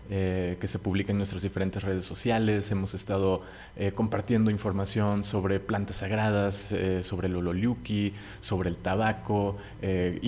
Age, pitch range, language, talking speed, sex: 30-49, 95-105 Hz, Spanish, 145 wpm, male